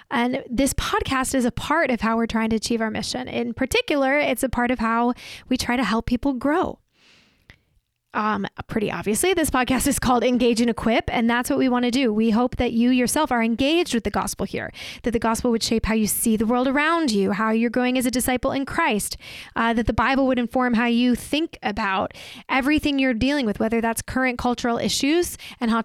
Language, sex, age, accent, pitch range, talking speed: English, female, 10-29, American, 230-270 Hz, 225 wpm